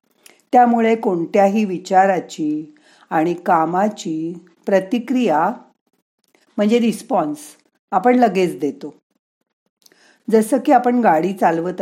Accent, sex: native, female